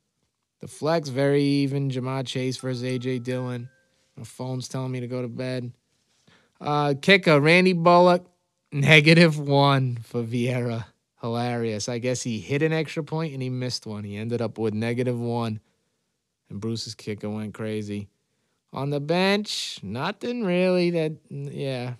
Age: 20-39